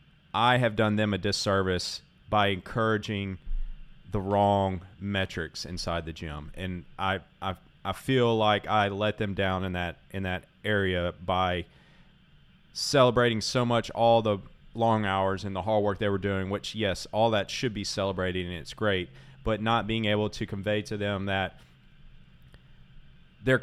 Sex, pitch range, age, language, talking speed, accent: male, 95-110 Hz, 30-49, English, 165 wpm, American